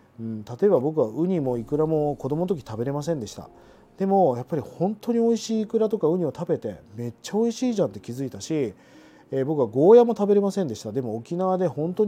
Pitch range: 120-200 Hz